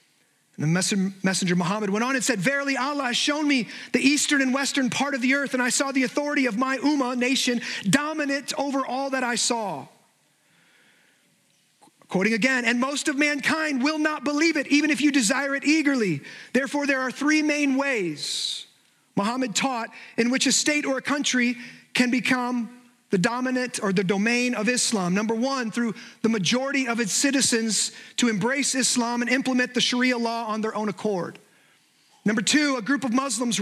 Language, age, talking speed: English, 30-49, 180 wpm